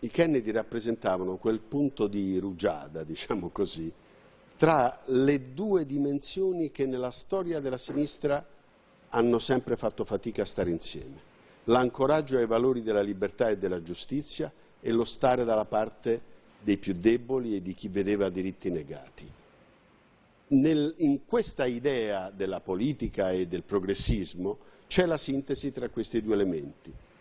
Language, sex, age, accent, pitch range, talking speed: Italian, male, 50-69, native, 100-140 Hz, 135 wpm